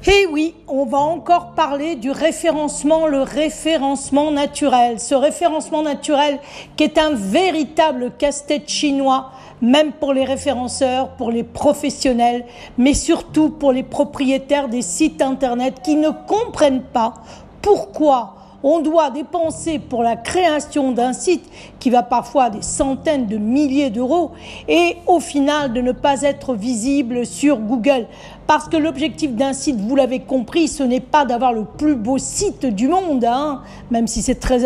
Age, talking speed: 40-59, 155 wpm